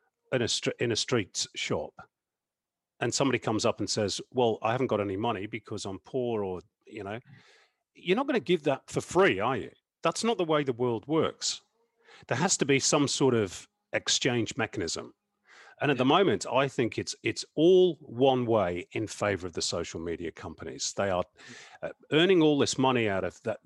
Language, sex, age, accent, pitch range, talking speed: English, male, 40-59, British, 110-160 Hz, 195 wpm